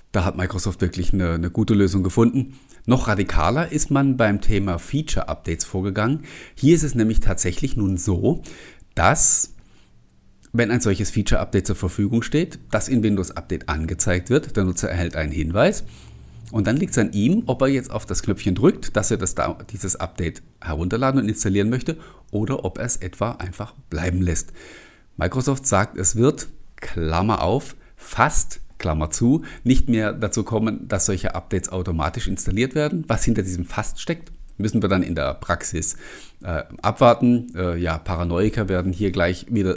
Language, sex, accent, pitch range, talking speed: German, male, German, 90-125 Hz, 165 wpm